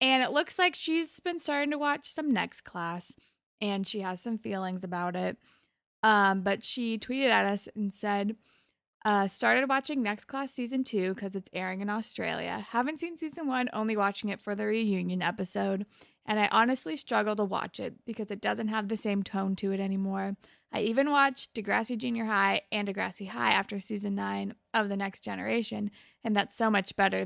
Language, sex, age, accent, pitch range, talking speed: English, female, 20-39, American, 200-270 Hz, 195 wpm